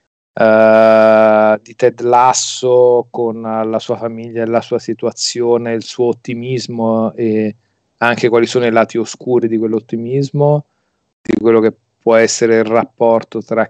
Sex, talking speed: male, 135 wpm